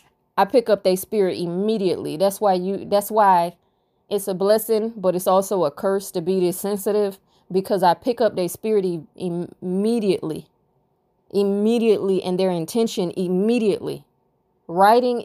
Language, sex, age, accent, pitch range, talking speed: English, female, 20-39, American, 185-220 Hz, 140 wpm